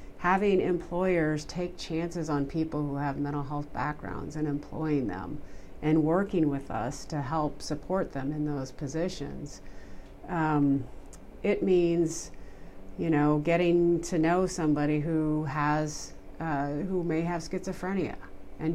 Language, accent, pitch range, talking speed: English, American, 140-165 Hz, 135 wpm